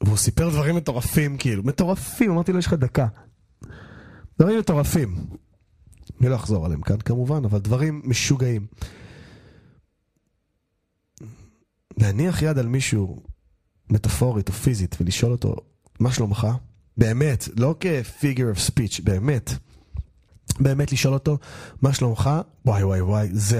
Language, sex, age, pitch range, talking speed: Hebrew, male, 30-49, 100-130 Hz, 125 wpm